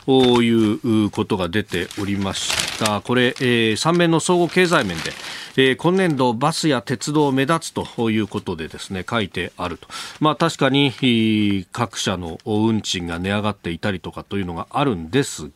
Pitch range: 105-155 Hz